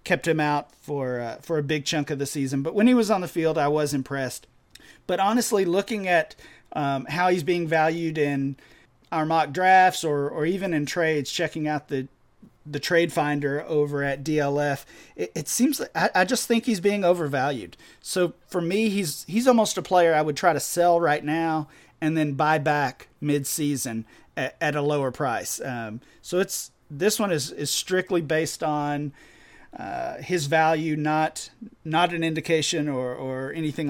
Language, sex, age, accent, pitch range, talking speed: English, male, 40-59, American, 140-170 Hz, 190 wpm